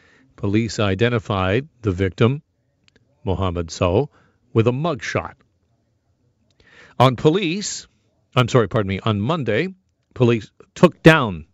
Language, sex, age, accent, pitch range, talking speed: English, male, 40-59, American, 95-125 Hz, 105 wpm